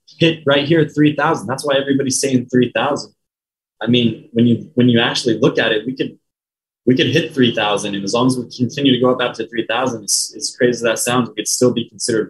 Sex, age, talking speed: male, 20-39, 235 wpm